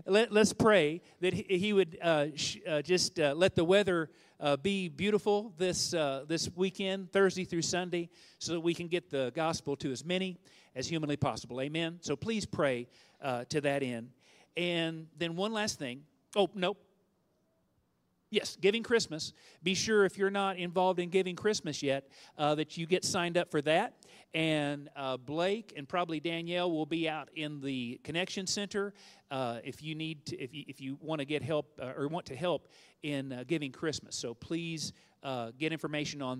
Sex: male